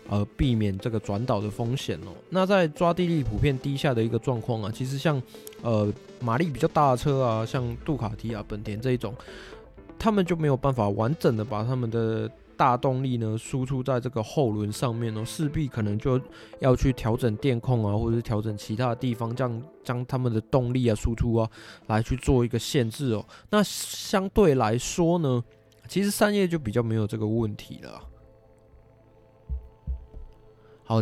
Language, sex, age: Chinese, male, 20-39